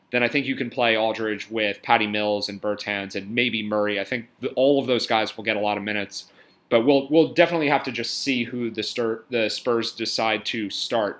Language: English